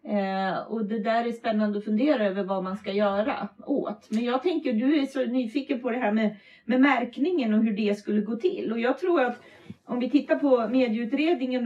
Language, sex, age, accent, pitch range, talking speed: Swedish, female, 40-59, native, 210-265 Hz, 215 wpm